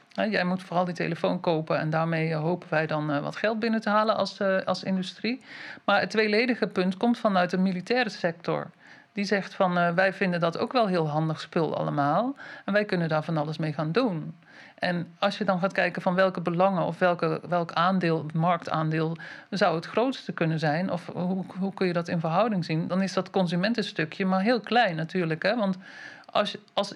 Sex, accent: male, Dutch